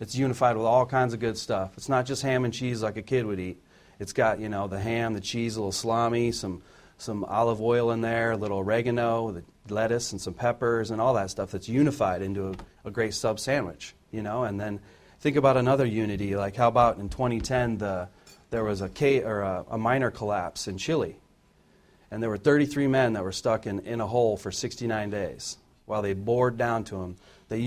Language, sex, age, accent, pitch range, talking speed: English, male, 40-59, American, 100-125 Hz, 220 wpm